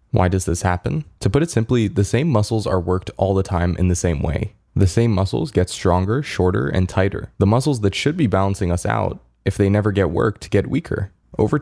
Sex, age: male, 20-39